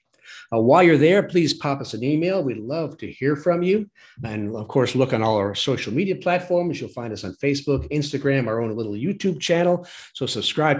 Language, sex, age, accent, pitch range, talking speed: English, male, 50-69, American, 115-160 Hz, 205 wpm